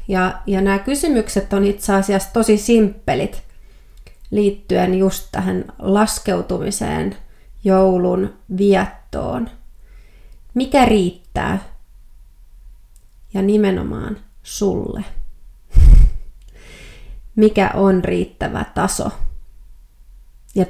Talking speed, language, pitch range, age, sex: 70 wpm, Finnish, 185-200 Hz, 30-49, female